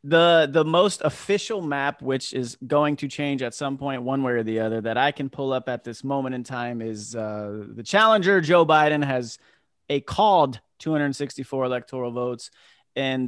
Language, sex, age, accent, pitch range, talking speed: English, male, 30-49, American, 125-160 Hz, 185 wpm